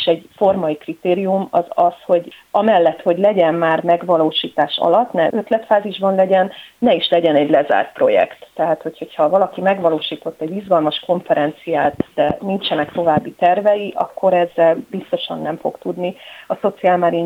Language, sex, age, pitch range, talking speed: Hungarian, female, 30-49, 175-205 Hz, 145 wpm